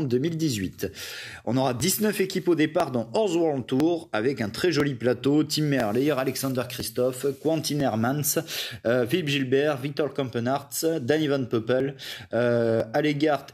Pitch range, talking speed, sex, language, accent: 125-160 Hz, 140 wpm, male, French, French